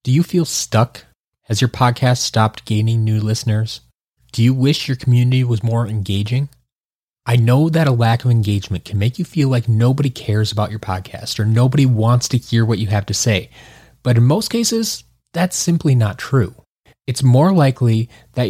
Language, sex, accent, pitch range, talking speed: English, male, American, 110-135 Hz, 190 wpm